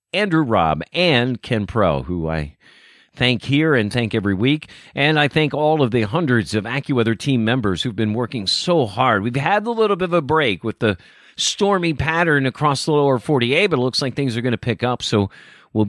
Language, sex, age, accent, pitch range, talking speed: English, male, 50-69, American, 110-160 Hz, 215 wpm